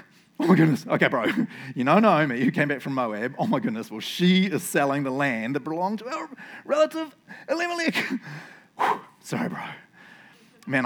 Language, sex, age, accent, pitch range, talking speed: English, male, 30-49, Australian, 155-260 Hz, 170 wpm